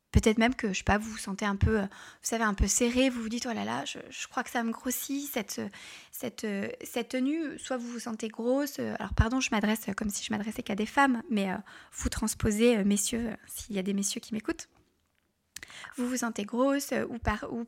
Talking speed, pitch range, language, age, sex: 225 wpm, 220-270 Hz, French, 20-39, female